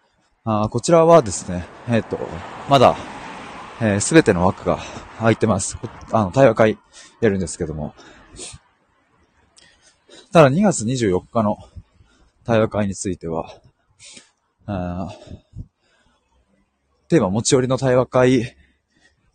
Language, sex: Japanese, male